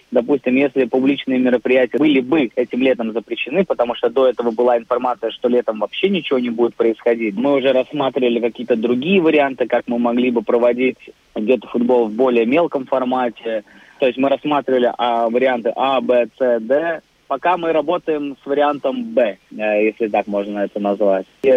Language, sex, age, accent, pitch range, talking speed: Russian, male, 20-39, native, 125-150 Hz, 165 wpm